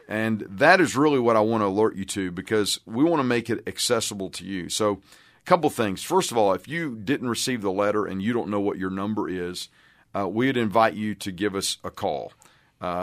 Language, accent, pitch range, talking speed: English, American, 95-115 Hz, 235 wpm